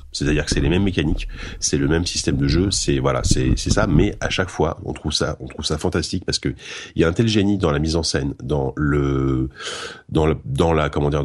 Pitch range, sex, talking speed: 70-90 Hz, male, 260 wpm